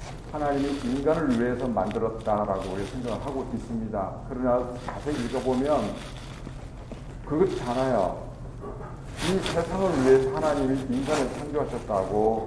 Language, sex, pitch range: Korean, male, 115-145 Hz